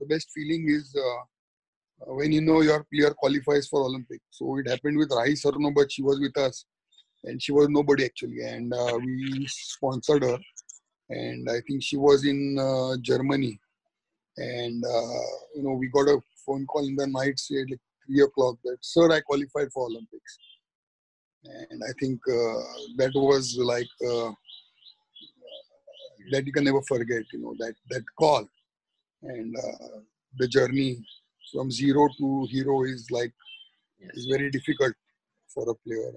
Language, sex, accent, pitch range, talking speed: English, male, Indian, 130-155 Hz, 165 wpm